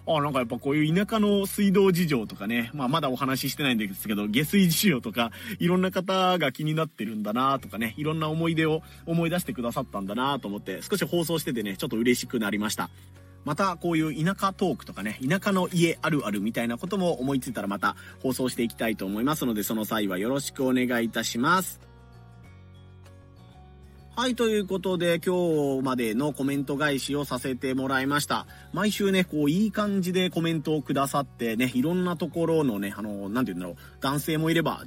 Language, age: Japanese, 30-49